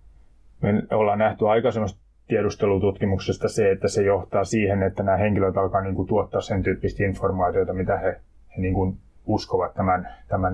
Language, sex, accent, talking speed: Finnish, male, native, 150 wpm